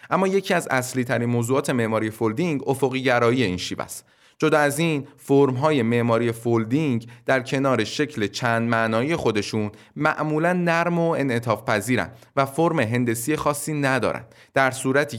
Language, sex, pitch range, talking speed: Persian, male, 115-150 Hz, 145 wpm